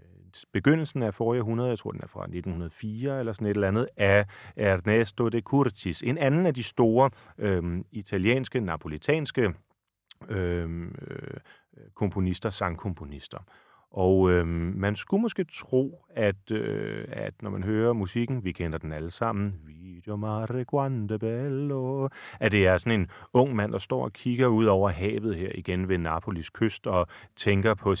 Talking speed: 150 wpm